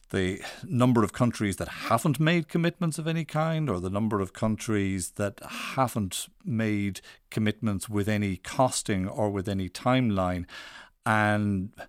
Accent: Irish